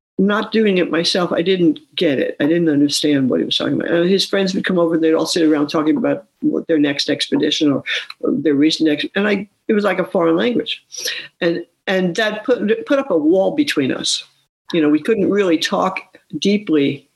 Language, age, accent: English, 60-79, American